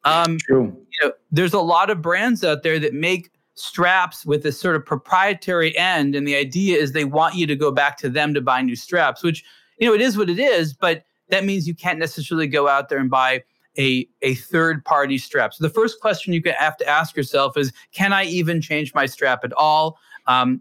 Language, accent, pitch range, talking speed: English, American, 130-165 Hz, 220 wpm